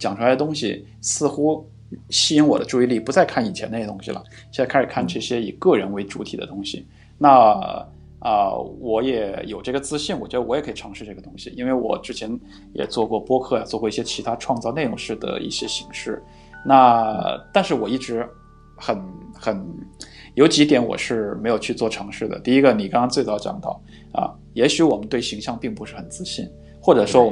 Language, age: Chinese, 20-39